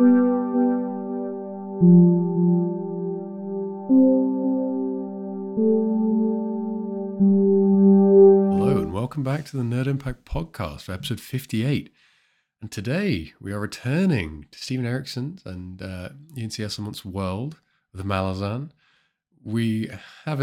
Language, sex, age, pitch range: English, male, 40-59, 90-135 Hz